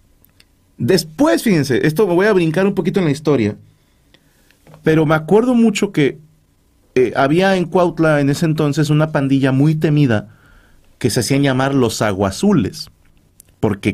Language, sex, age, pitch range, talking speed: Spanish, male, 40-59, 105-155 Hz, 150 wpm